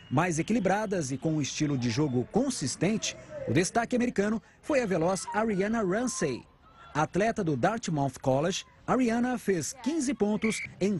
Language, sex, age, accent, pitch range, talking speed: Portuguese, male, 50-69, Brazilian, 170-230 Hz, 140 wpm